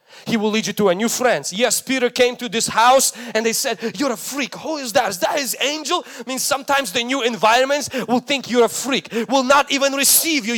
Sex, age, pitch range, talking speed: male, 20-39, 155-225 Hz, 245 wpm